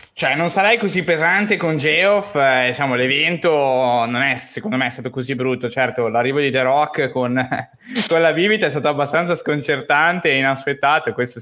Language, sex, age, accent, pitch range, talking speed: Italian, male, 20-39, native, 120-140 Hz, 180 wpm